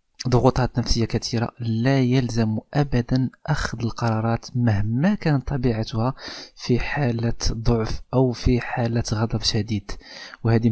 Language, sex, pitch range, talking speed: Arabic, male, 115-130 Hz, 110 wpm